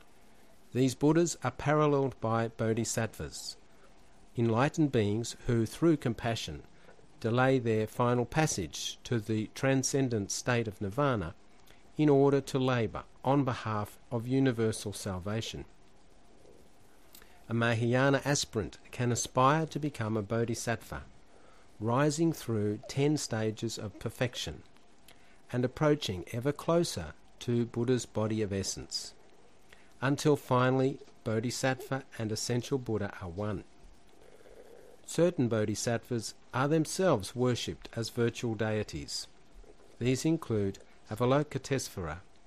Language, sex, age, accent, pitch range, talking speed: English, male, 50-69, Australian, 105-135 Hz, 105 wpm